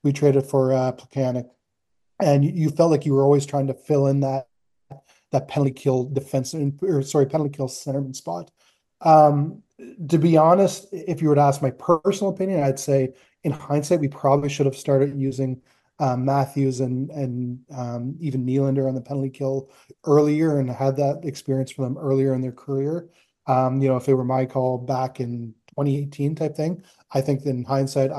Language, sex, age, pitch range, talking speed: English, male, 20-39, 130-145 Hz, 185 wpm